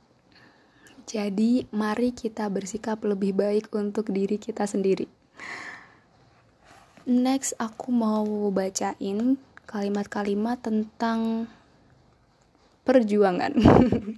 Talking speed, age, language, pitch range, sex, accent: 70 wpm, 10-29, Indonesian, 200-225 Hz, female, native